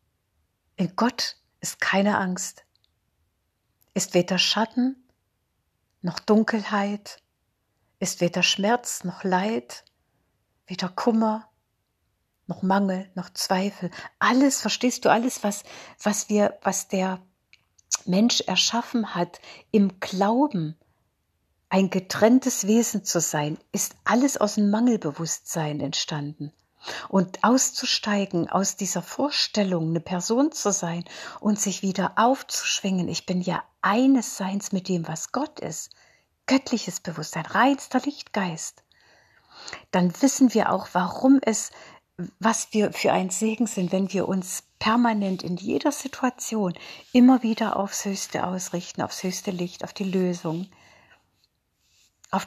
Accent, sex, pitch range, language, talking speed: German, female, 180-225 Hz, German, 120 wpm